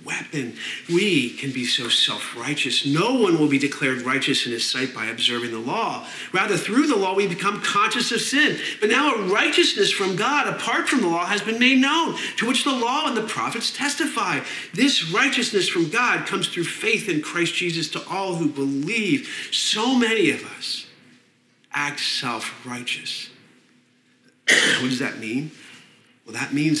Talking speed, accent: 170 wpm, American